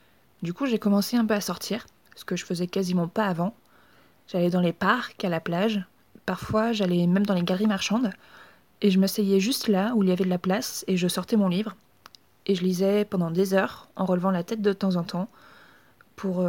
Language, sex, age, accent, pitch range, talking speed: French, female, 20-39, French, 185-220 Hz, 220 wpm